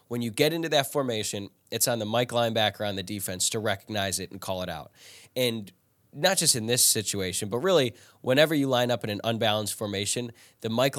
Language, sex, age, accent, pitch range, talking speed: English, male, 10-29, American, 100-130 Hz, 215 wpm